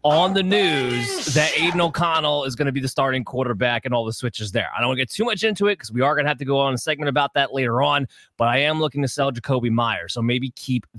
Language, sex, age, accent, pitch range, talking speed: English, male, 20-39, American, 125-155 Hz, 290 wpm